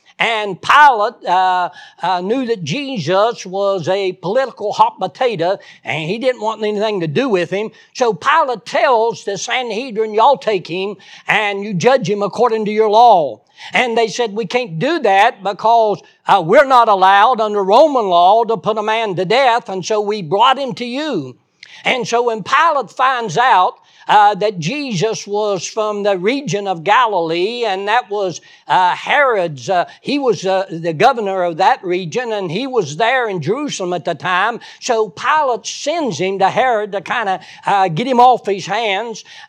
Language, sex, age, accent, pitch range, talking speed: English, male, 60-79, American, 190-240 Hz, 180 wpm